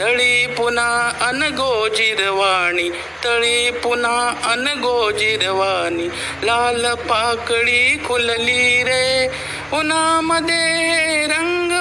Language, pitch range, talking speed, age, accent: Marathi, 225-270 Hz, 60 wpm, 60-79, native